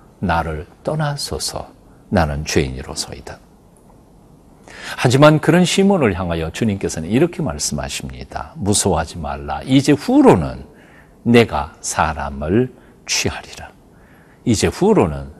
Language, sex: Korean, male